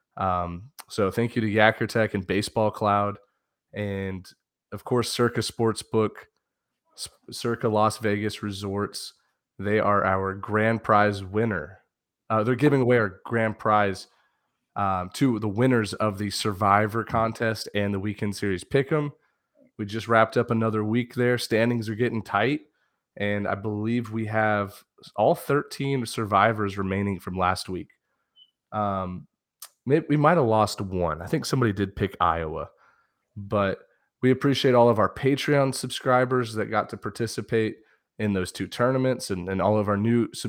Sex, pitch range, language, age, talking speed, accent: male, 100-120 Hz, English, 30-49, 155 wpm, American